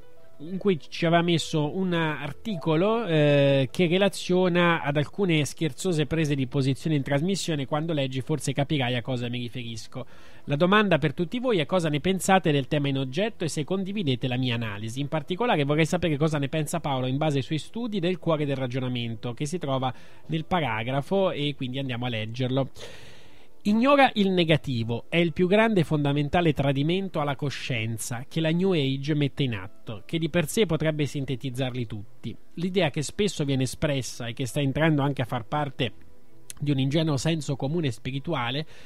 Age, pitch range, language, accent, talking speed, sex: 20-39, 130-170 Hz, Italian, native, 180 wpm, male